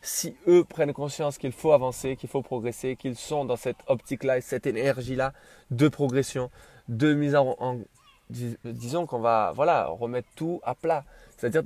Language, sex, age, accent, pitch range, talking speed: French, male, 20-39, French, 120-155 Hz, 175 wpm